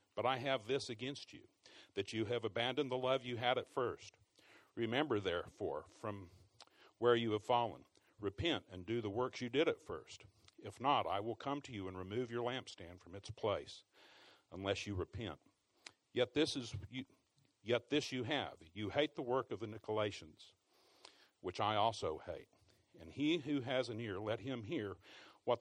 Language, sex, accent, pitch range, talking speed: English, male, American, 105-130 Hz, 180 wpm